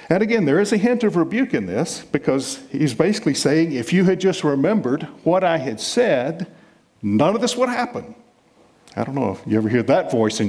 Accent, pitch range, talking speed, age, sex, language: American, 125-165 Hz, 215 wpm, 50-69, male, English